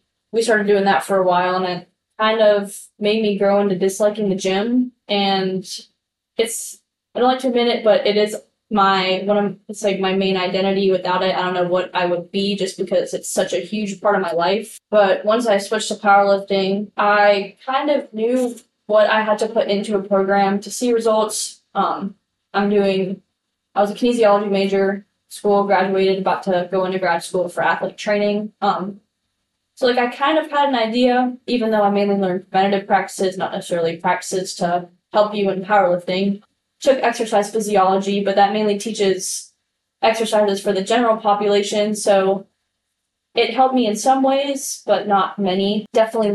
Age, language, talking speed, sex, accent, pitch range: 10-29, English, 185 wpm, female, American, 195-220 Hz